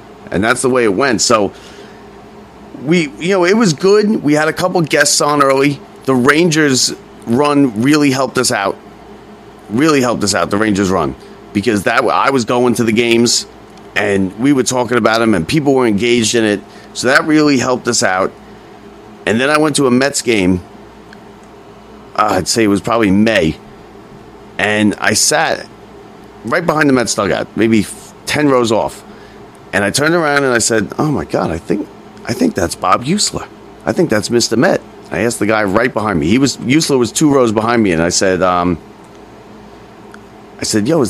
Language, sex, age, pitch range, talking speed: English, male, 30-49, 105-140 Hz, 190 wpm